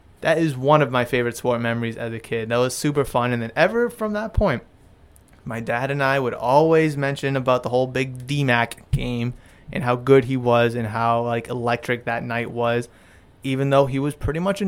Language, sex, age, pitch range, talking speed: English, male, 20-39, 115-140 Hz, 220 wpm